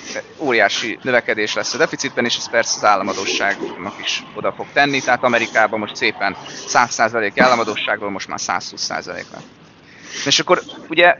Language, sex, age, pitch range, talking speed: Hungarian, male, 20-39, 130-165 Hz, 135 wpm